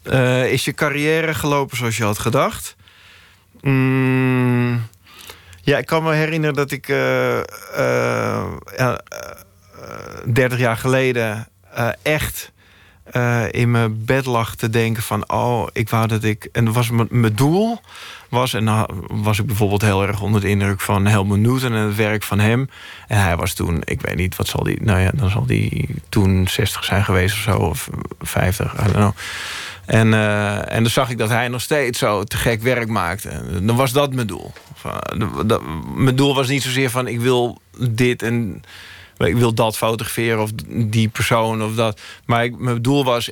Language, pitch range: Dutch, 100-125 Hz